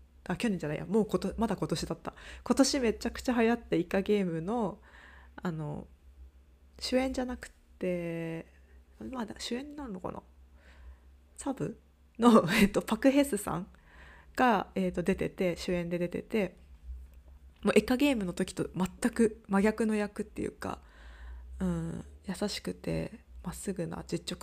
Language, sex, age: Japanese, female, 20-39